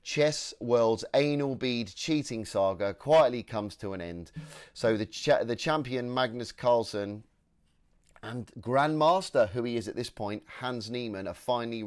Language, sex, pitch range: English, male, 105-135 Hz